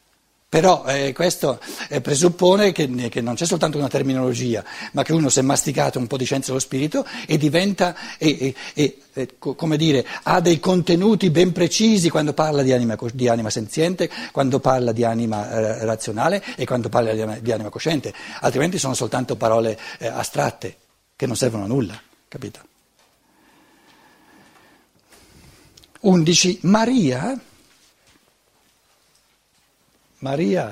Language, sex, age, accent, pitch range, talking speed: Italian, male, 60-79, native, 115-175 Hz, 130 wpm